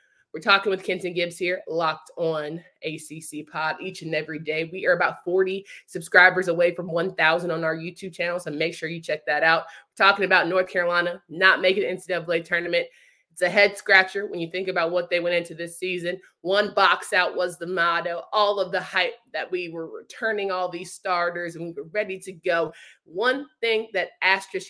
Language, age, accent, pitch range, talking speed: English, 20-39, American, 155-185 Hz, 200 wpm